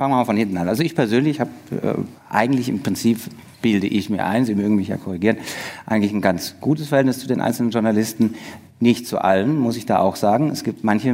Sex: male